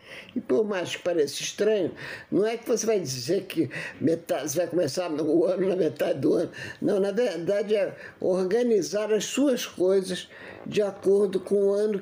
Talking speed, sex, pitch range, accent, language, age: 175 wpm, male, 180-210 Hz, Brazilian, Portuguese, 50-69